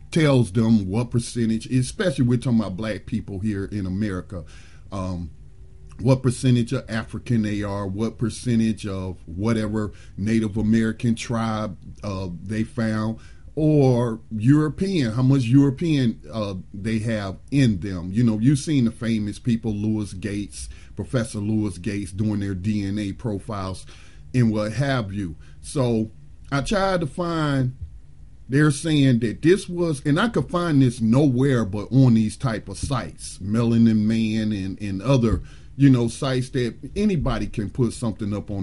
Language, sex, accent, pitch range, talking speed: English, male, American, 95-125 Hz, 150 wpm